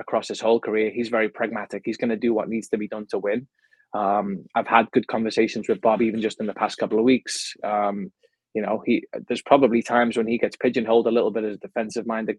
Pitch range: 110-120 Hz